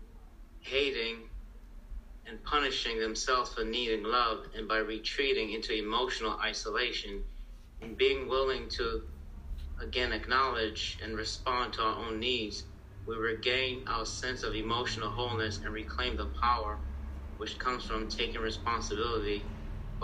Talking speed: 125 wpm